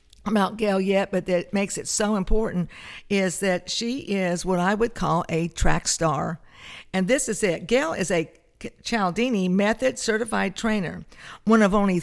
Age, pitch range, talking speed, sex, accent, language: 50-69, 180-220 Hz, 170 wpm, female, American, English